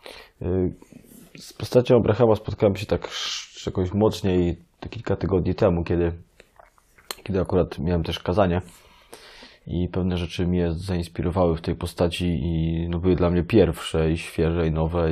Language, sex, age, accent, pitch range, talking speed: Polish, male, 20-39, native, 80-90 Hz, 145 wpm